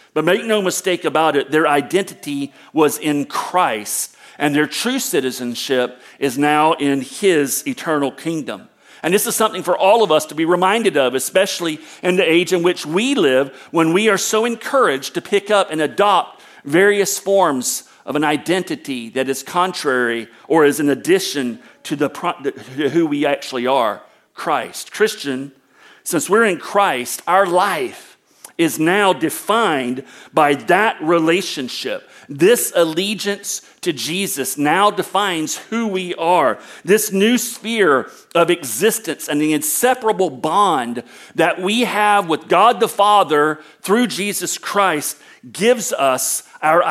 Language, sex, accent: English, male, American